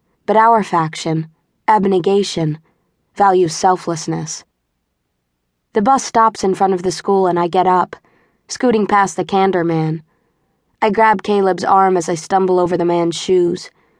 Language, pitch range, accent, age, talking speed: English, 165-200 Hz, American, 20-39, 145 wpm